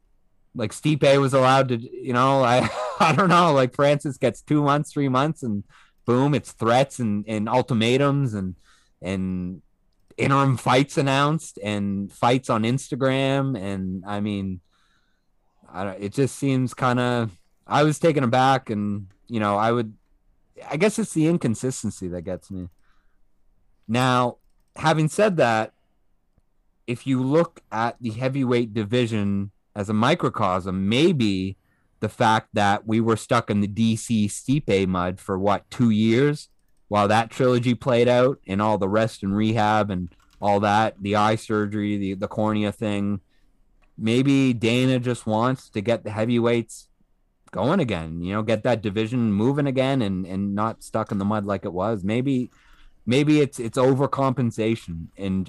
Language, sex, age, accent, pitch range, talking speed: English, male, 30-49, American, 100-130 Hz, 160 wpm